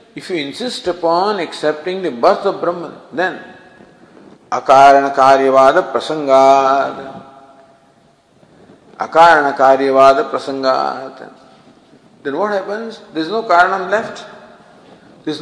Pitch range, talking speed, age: 140-205 Hz, 85 wpm, 50-69